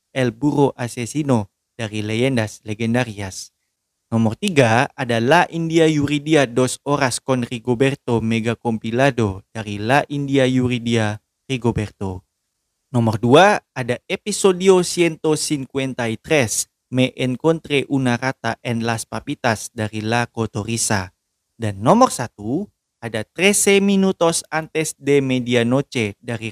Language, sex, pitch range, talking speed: Indonesian, male, 115-165 Hz, 110 wpm